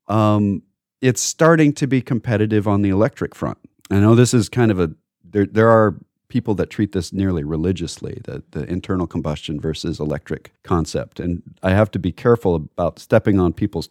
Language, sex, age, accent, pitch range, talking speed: English, male, 40-59, American, 90-115 Hz, 185 wpm